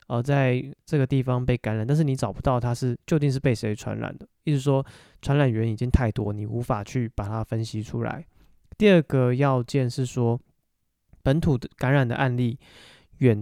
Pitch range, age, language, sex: 120-140 Hz, 20-39, Chinese, male